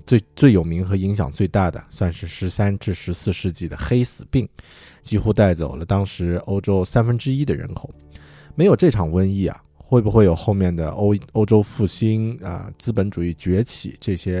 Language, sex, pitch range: Chinese, male, 85-105 Hz